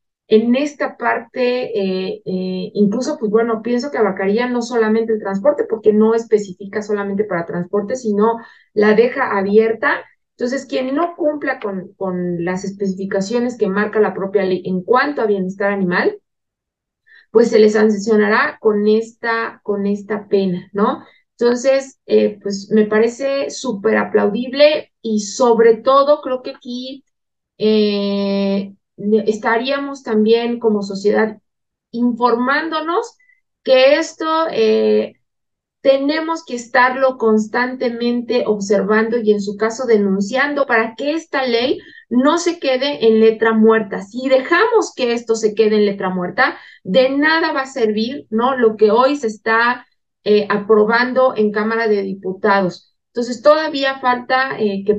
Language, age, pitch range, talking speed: Spanish, 20-39, 205-260 Hz, 135 wpm